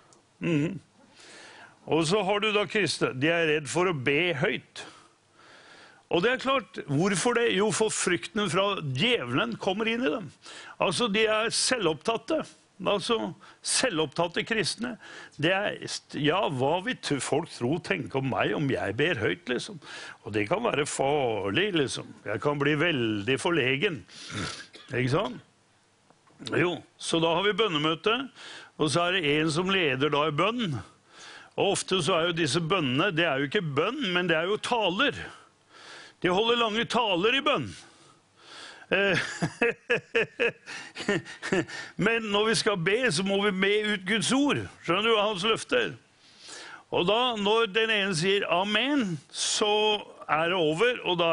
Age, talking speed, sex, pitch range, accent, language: 60-79, 155 wpm, male, 160-220 Hz, Swedish, English